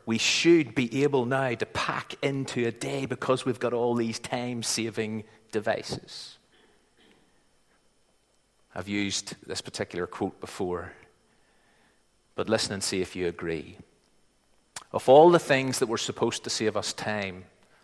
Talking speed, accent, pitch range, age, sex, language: 140 wpm, British, 105-130 Hz, 40-59, male, English